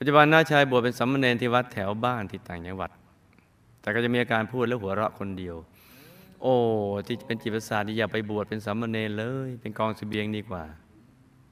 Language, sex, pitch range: Thai, male, 105-125 Hz